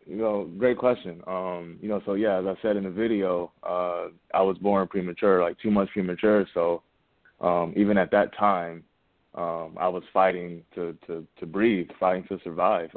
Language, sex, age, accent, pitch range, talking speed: English, male, 20-39, American, 90-100 Hz, 185 wpm